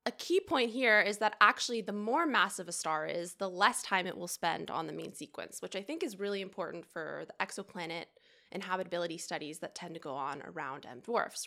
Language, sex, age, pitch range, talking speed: English, female, 20-39, 175-225 Hz, 220 wpm